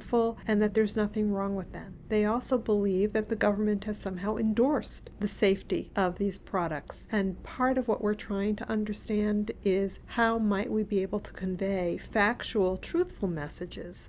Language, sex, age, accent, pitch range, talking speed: English, female, 50-69, American, 190-215 Hz, 170 wpm